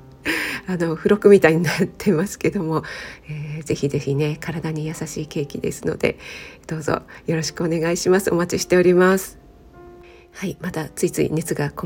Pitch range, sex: 160-190 Hz, female